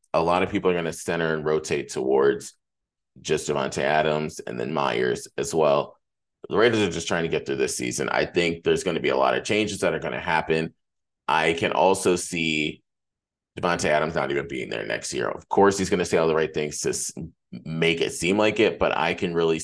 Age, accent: 30-49, American